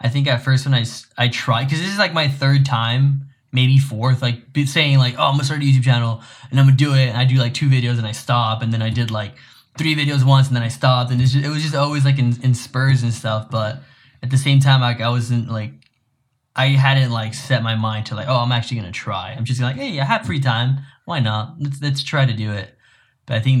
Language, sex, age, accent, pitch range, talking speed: English, male, 10-29, American, 120-140 Hz, 270 wpm